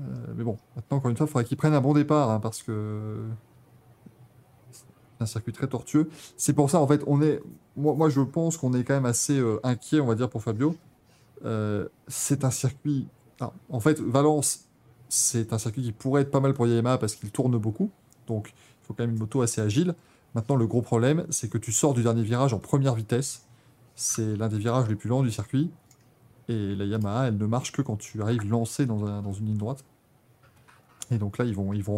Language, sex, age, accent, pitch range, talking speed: French, male, 20-39, French, 110-140 Hz, 225 wpm